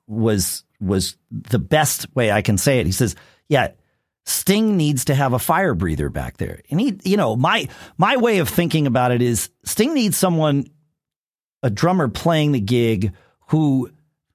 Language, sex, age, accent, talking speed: English, male, 50-69, American, 175 wpm